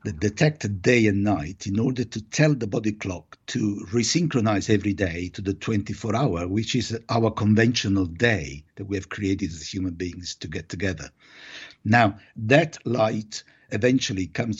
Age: 60-79